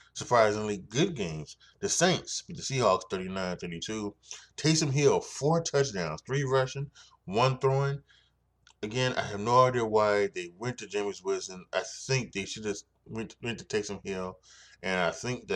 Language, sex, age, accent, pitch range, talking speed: English, male, 20-39, American, 100-130 Hz, 160 wpm